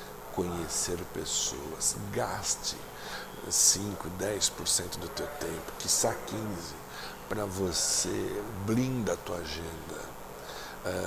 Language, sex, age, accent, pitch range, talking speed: Portuguese, male, 60-79, Brazilian, 90-110 Hz, 90 wpm